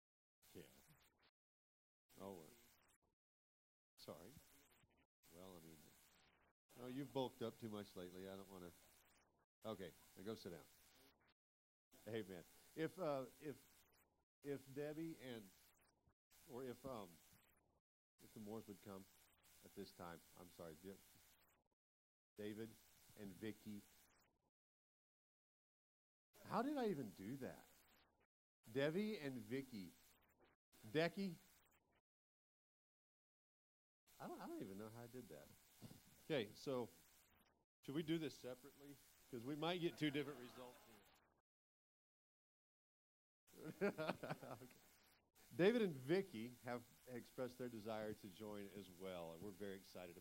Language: English